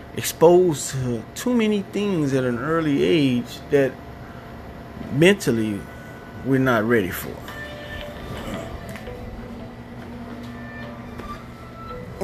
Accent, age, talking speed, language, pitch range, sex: American, 30-49, 80 wpm, English, 110-130 Hz, male